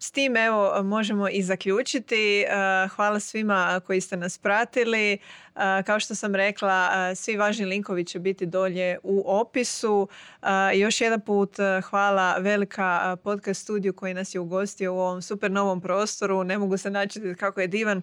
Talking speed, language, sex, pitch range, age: 155 wpm, Croatian, female, 185-210 Hz, 20-39